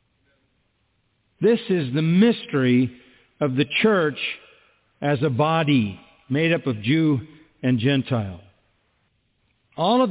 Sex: male